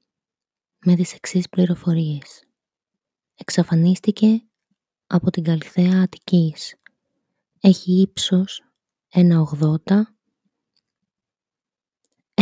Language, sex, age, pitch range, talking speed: Greek, female, 20-39, 170-200 Hz, 60 wpm